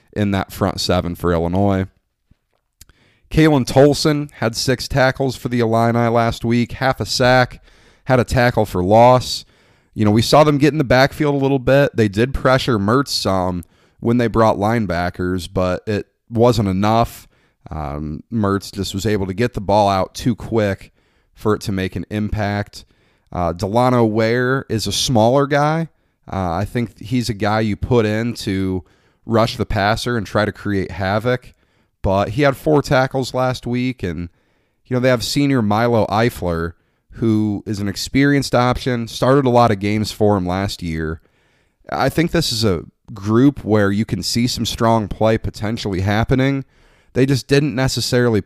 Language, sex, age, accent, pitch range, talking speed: English, male, 30-49, American, 100-125 Hz, 175 wpm